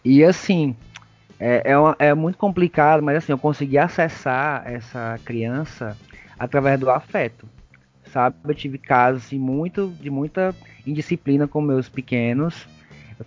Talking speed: 140 wpm